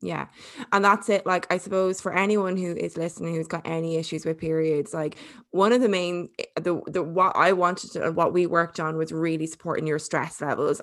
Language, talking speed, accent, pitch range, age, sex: English, 215 wpm, Irish, 160-185 Hz, 20-39, female